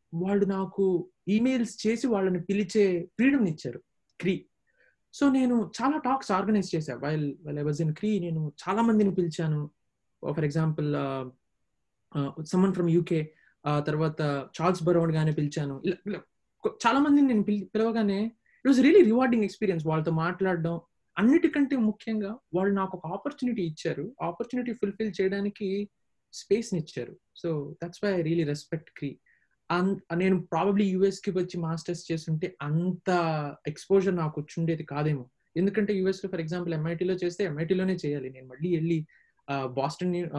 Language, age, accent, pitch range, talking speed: Telugu, 20-39, native, 160-210 Hz, 130 wpm